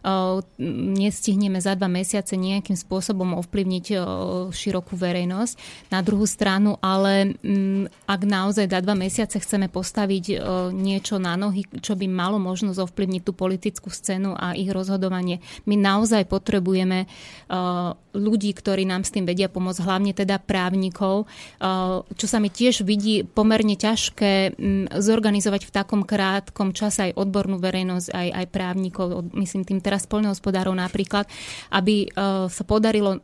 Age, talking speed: 20-39, 130 wpm